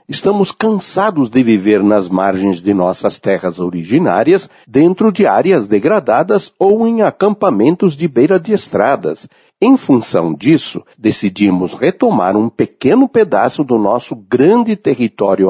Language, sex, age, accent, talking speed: Portuguese, male, 60-79, Brazilian, 130 wpm